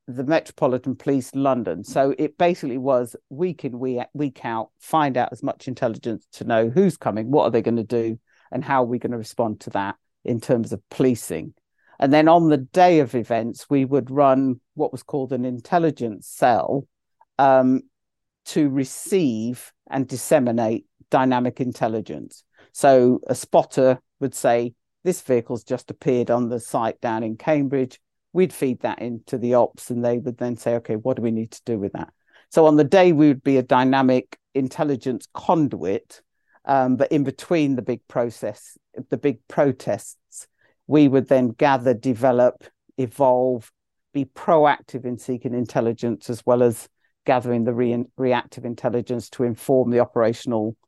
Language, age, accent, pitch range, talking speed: English, 50-69, British, 120-135 Hz, 170 wpm